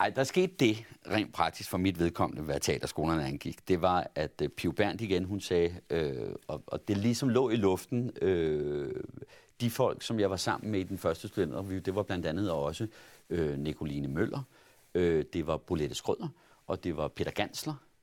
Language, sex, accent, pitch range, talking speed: Danish, male, native, 90-120 Hz, 195 wpm